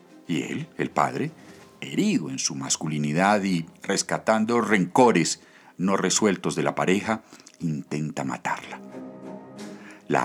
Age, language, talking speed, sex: 50-69, Spanish, 110 wpm, male